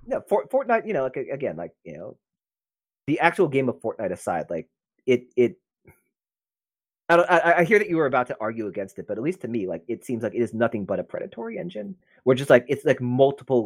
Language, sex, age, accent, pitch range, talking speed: English, male, 30-49, American, 95-125 Hz, 235 wpm